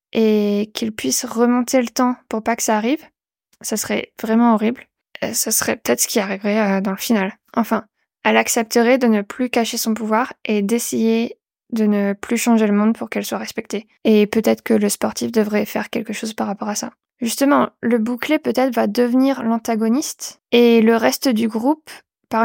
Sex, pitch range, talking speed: female, 220-250 Hz, 190 wpm